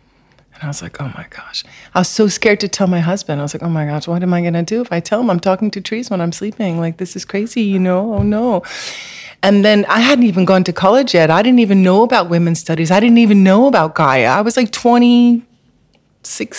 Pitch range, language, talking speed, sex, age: 165-200 Hz, English, 255 wpm, female, 30-49